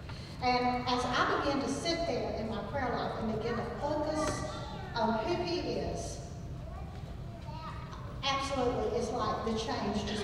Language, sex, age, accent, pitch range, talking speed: English, female, 50-69, American, 225-335 Hz, 145 wpm